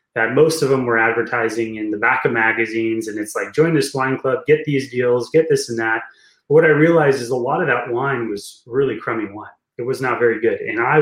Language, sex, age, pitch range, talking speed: English, male, 20-39, 115-150 Hz, 250 wpm